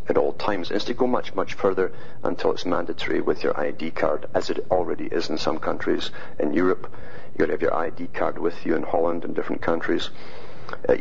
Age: 50-69